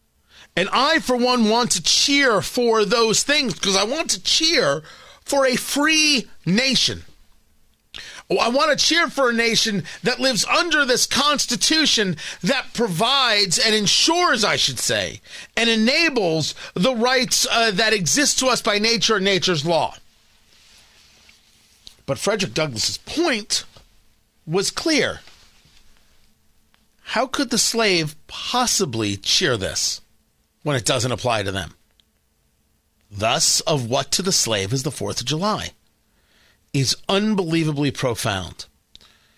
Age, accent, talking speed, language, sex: 40-59, American, 130 wpm, English, male